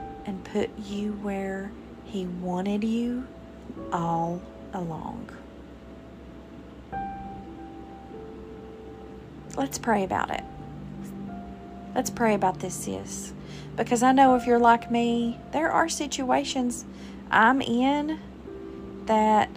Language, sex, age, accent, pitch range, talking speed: English, female, 40-59, American, 190-245 Hz, 95 wpm